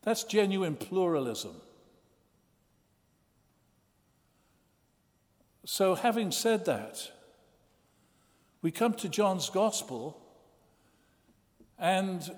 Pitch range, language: 145-205 Hz, English